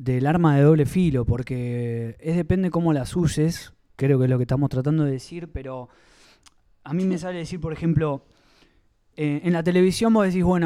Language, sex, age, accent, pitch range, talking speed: Spanish, male, 20-39, Argentinian, 135-170 Hz, 195 wpm